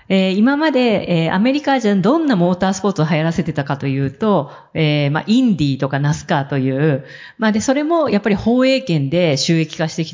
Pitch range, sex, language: 150-210 Hz, female, Japanese